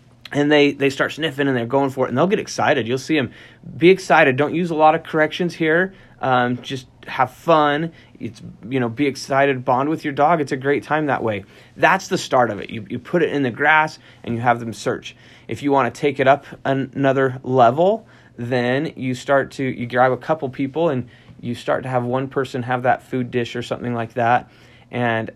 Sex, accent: male, American